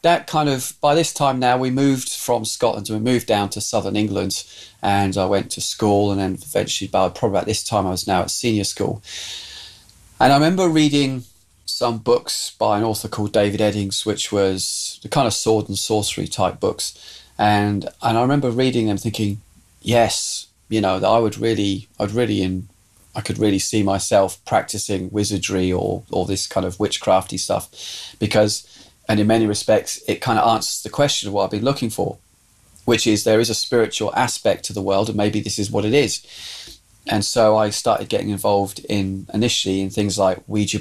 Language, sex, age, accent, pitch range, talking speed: English, male, 30-49, British, 95-110 Hz, 200 wpm